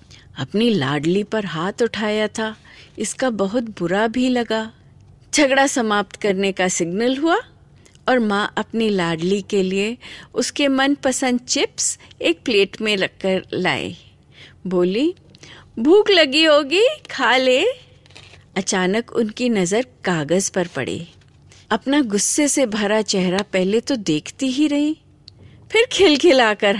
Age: 50-69